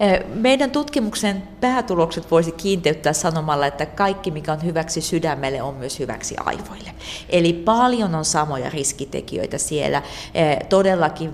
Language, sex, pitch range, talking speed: Finnish, female, 145-185 Hz, 120 wpm